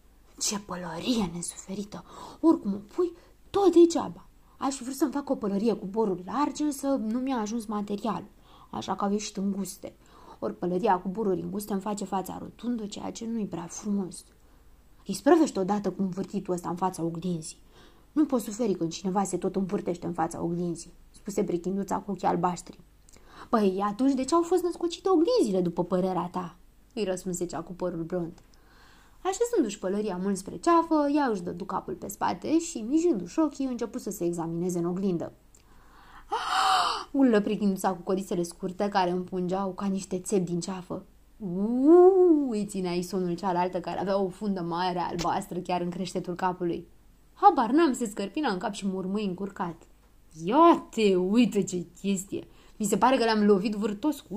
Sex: female